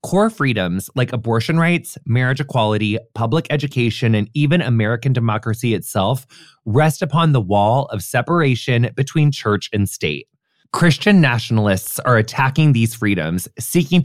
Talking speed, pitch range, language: 130 wpm, 115-165 Hz, English